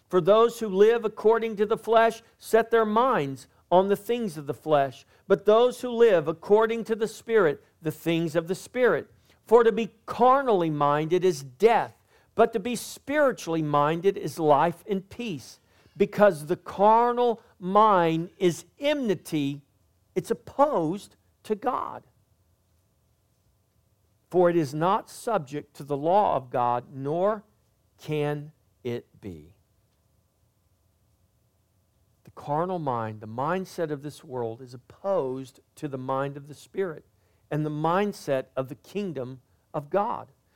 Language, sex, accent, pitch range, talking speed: English, male, American, 120-205 Hz, 140 wpm